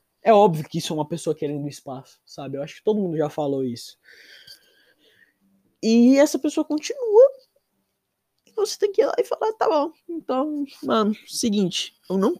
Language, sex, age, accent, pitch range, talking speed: Portuguese, male, 20-39, Brazilian, 160-240 Hz, 175 wpm